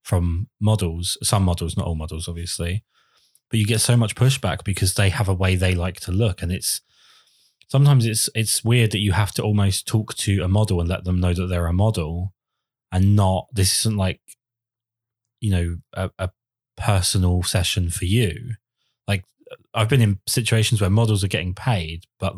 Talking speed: 190 wpm